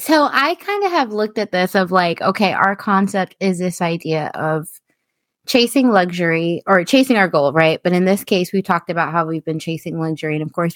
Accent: American